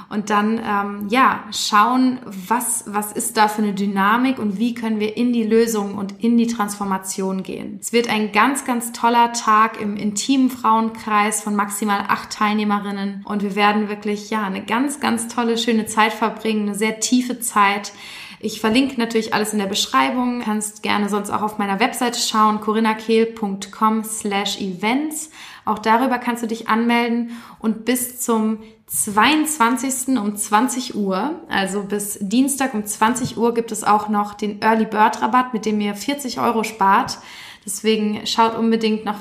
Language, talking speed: German, 165 wpm